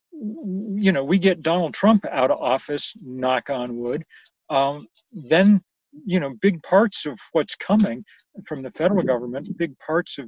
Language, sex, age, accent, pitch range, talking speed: English, male, 40-59, American, 140-195 Hz, 165 wpm